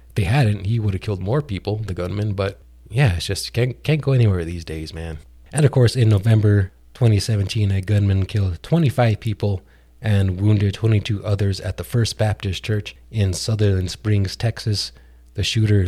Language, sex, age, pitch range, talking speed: English, male, 30-49, 95-115 Hz, 180 wpm